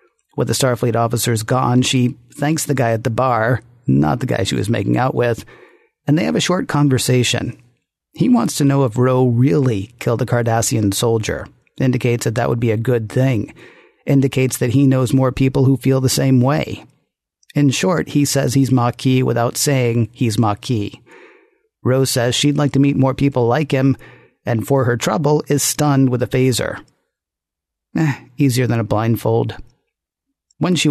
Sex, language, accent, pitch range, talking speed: male, English, American, 120-145 Hz, 180 wpm